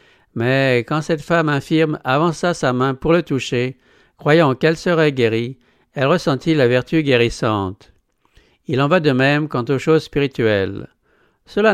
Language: English